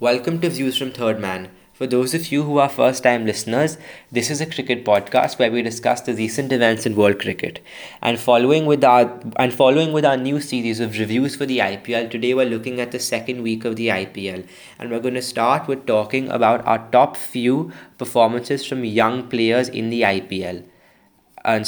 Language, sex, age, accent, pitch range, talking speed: English, male, 20-39, Indian, 115-130 Hz, 200 wpm